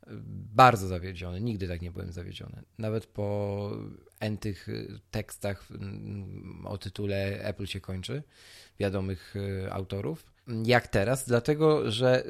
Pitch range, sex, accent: 105-150 Hz, male, native